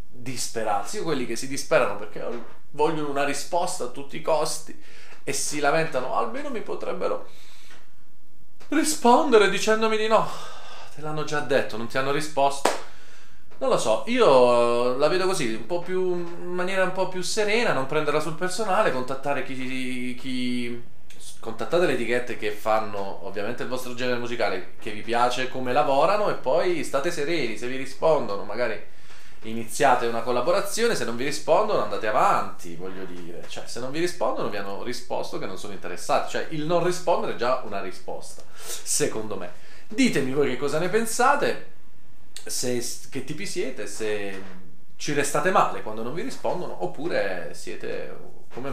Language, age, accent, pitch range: Italian, 30-49, native, 115-175 Hz